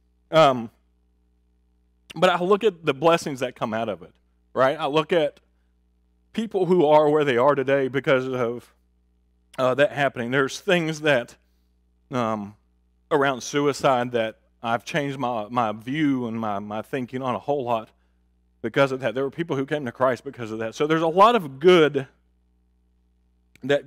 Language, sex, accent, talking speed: English, male, American, 170 wpm